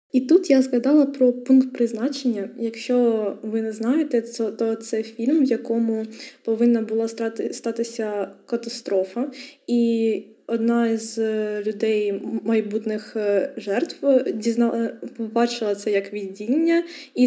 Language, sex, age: Ukrainian, female, 20-39